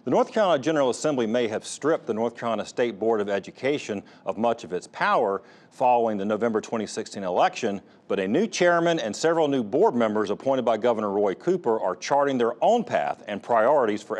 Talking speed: 200 wpm